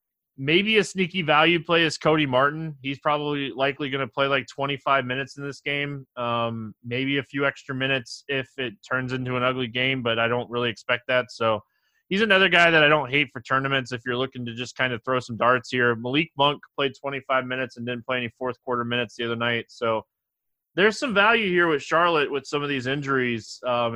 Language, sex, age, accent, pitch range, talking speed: English, male, 20-39, American, 120-150 Hz, 220 wpm